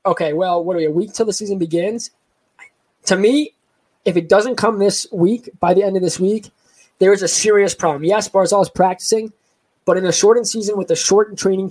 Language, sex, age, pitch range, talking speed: English, male, 20-39, 175-210 Hz, 220 wpm